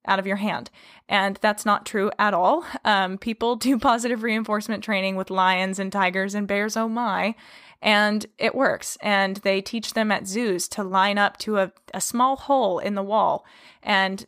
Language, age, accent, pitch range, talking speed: English, 20-39, American, 190-225 Hz, 190 wpm